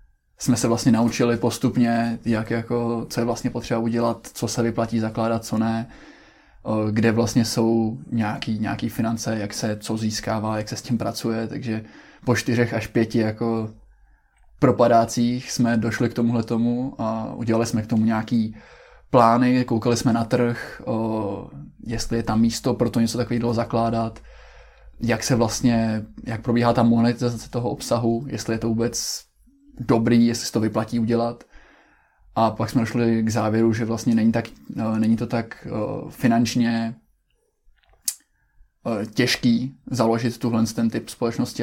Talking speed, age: 145 wpm, 20-39